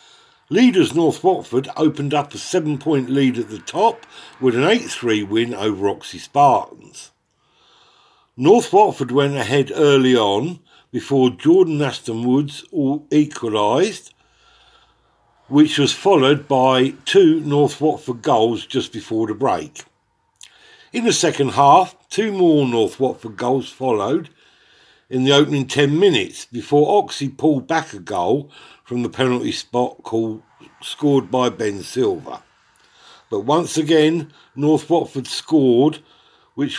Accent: British